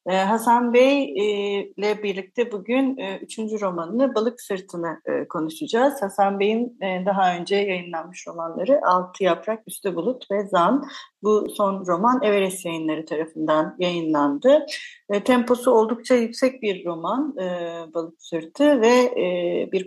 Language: Turkish